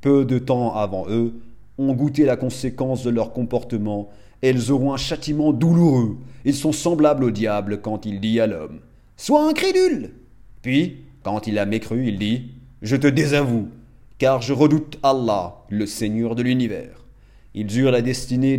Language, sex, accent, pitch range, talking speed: French, male, French, 115-150 Hz, 175 wpm